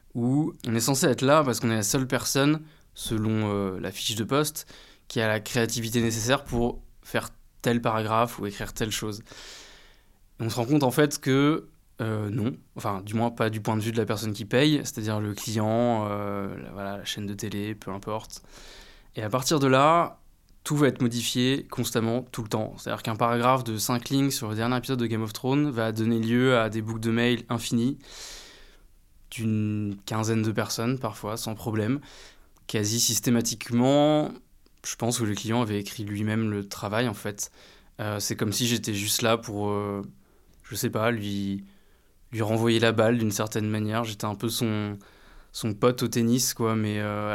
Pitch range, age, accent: 105-120 Hz, 20-39, French